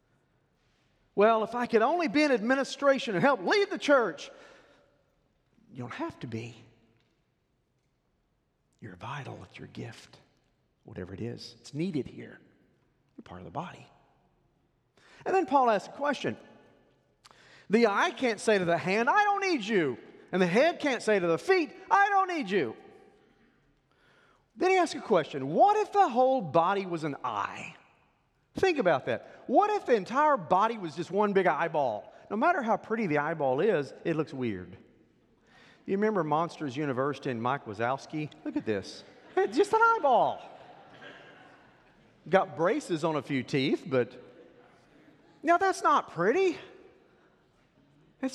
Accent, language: American, English